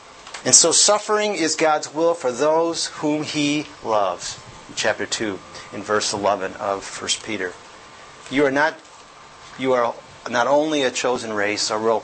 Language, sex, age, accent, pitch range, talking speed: English, male, 40-59, American, 115-160 Hz, 155 wpm